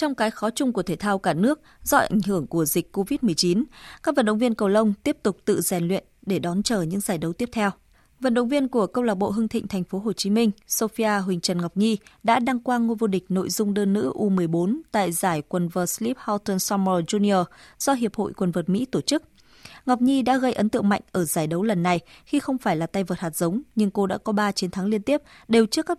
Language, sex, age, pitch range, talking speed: Vietnamese, female, 20-39, 185-230 Hz, 255 wpm